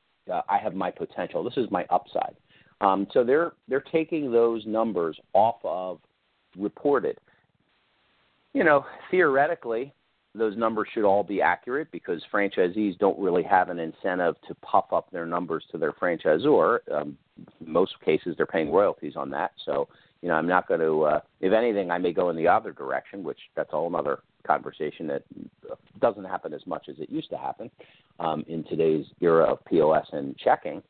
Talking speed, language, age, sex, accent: 180 wpm, English, 50-69, male, American